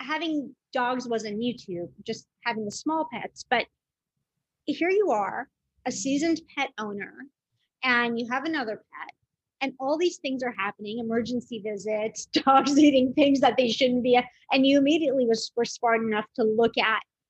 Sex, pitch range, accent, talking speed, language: female, 230-290 Hz, American, 170 wpm, English